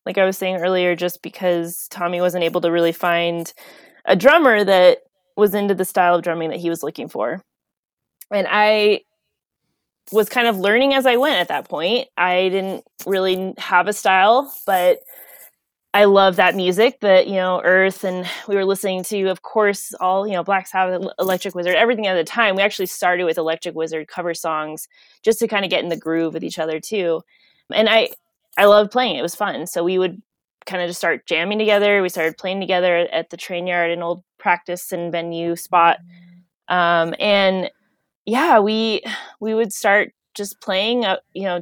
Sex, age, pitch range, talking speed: female, 20-39, 170-205 Hz, 195 wpm